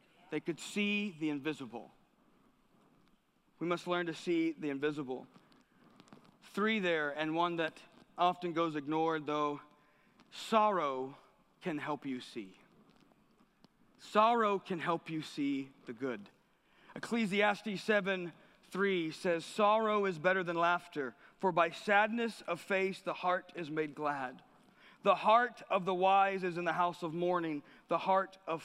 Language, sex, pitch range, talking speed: English, male, 150-210 Hz, 140 wpm